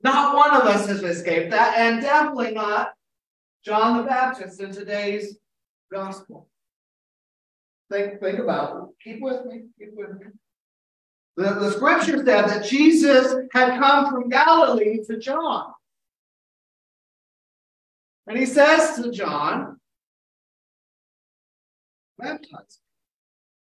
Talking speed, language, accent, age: 110 wpm, English, American, 40-59